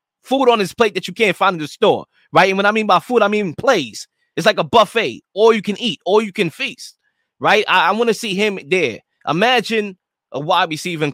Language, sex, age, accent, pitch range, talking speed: English, male, 20-39, American, 155-230 Hz, 235 wpm